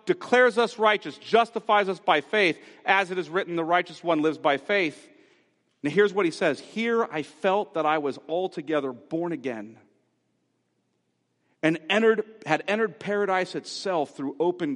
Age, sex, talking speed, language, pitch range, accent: 40-59, male, 160 wpm, English, 160-240 Hz, American